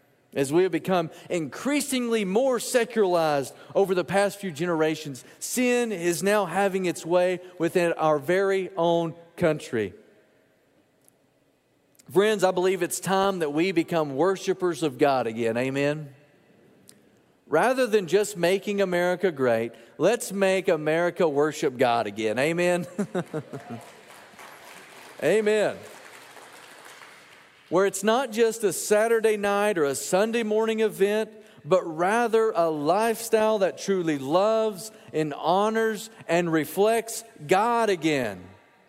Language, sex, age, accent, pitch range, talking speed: English, male, 40-59, American, 165-220 Hz, 115 wpm